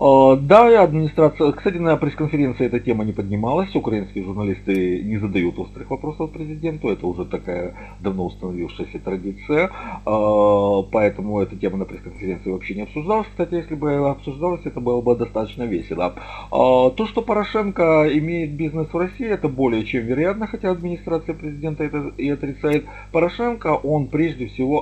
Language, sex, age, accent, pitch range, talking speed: Russian, male, 40-59, native, 95-155 Hz, 145 wpm